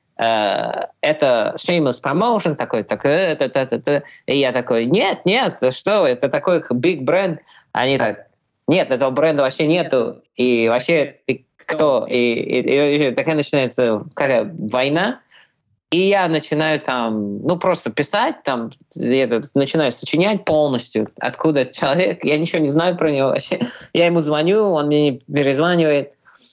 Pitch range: 125-165 Hz